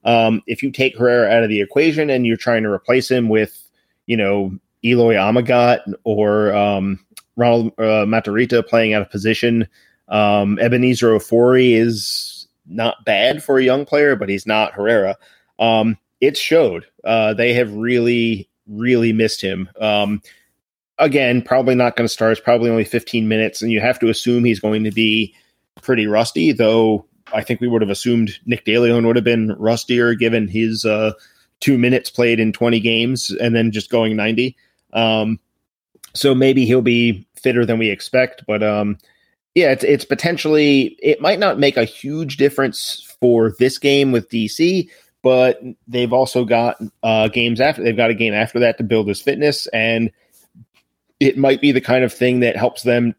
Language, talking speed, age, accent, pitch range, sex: English, 180 wpm, 30-49, American, 110-125 Hz, male